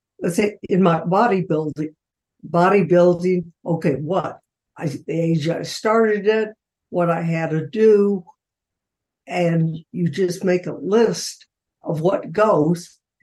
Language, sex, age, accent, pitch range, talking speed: English, female, 60-79, American, 165-195 Hz, 125 wpm